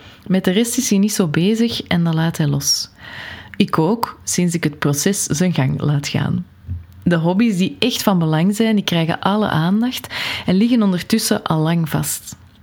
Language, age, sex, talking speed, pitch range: Dutch, 20-39, female, 190 wpm, 160-205 Hz